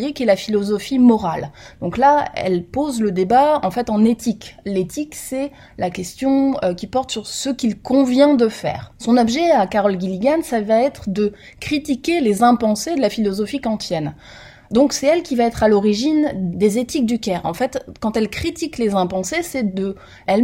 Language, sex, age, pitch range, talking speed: French, female, 20-39, 205-275 Hz, 190 wpm